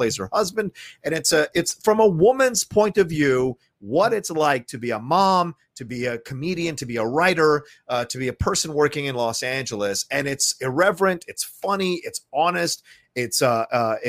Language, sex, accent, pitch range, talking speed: English, male, American, 125-175 Hz, 195 wpm